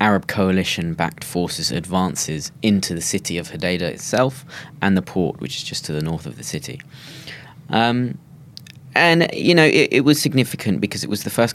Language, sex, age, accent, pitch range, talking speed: English, male, 20-39, British, 90-135 Hz, 180 wpm